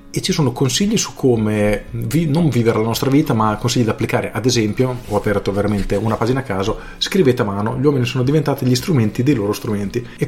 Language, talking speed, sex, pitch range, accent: Italian, 215 wpm, male, 110-145 Hz, native